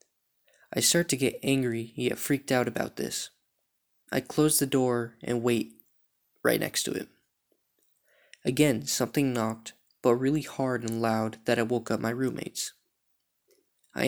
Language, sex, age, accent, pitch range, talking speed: English, male, 20-39, American, 120-135 Hz, 150 wpm